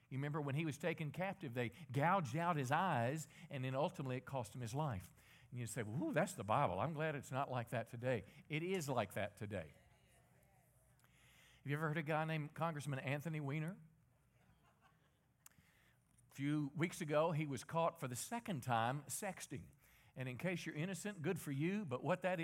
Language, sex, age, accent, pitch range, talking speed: English, male, 50-69, American, 130-175 Hz, 195 wpm